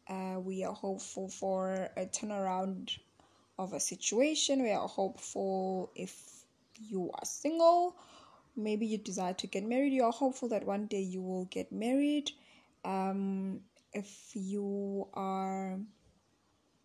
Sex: female